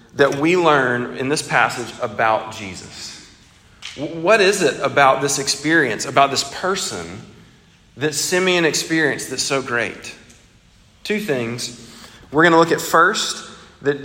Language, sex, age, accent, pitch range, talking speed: English, male, 40-59, American, 125-170 Hz, 135 wpm